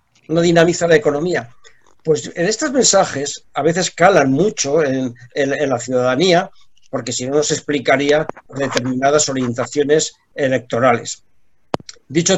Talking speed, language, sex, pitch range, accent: 125 wpm, Spanish, male, 130-160 Hz, Spanish